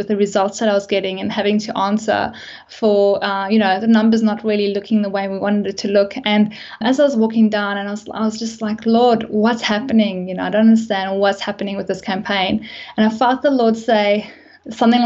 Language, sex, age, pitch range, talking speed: English, female, 10-29, 205-235 Hz, 230 wpm